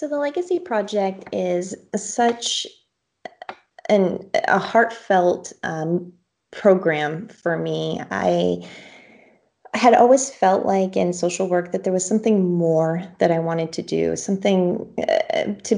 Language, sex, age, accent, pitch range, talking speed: English, female, 30-49, American, 165-205 Hz, 125 wpm